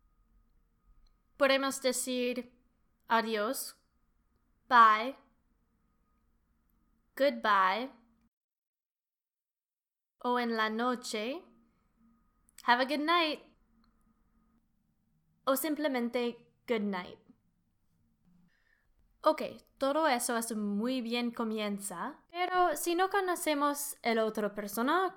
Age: 10-29